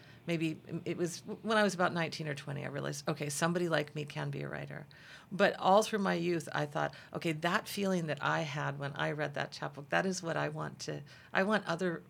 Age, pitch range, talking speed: 40-59, 145-175 Hz, 235 wpm